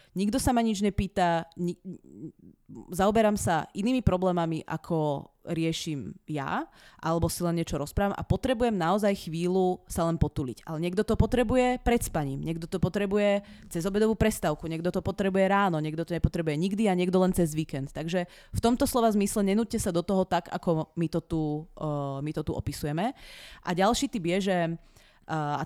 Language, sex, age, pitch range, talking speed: Czech, female, 30-49, 165-205 Hz, 175 wpm